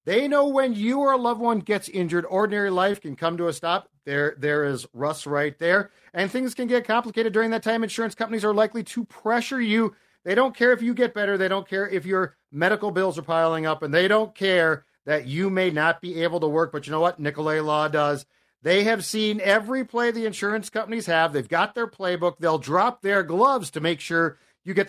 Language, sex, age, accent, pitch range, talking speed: English, male, 50-69, American, 145-205 Hz, 230 wpm